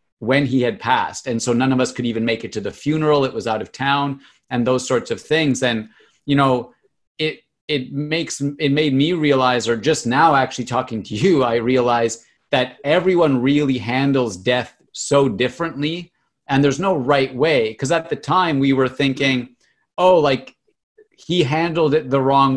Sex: male